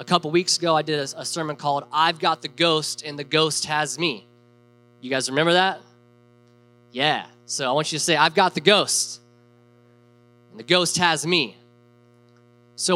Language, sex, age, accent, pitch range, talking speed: English, male, 20-39, American, 135-185 Hz, 180 wpm